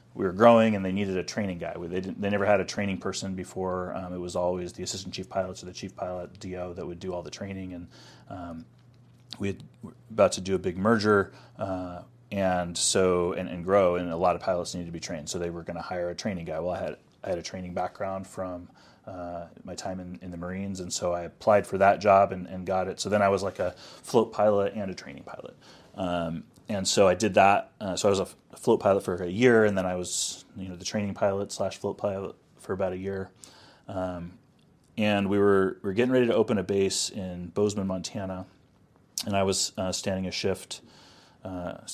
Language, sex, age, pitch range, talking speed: English, male, 30-49, 90-100 Hz, 240 wpm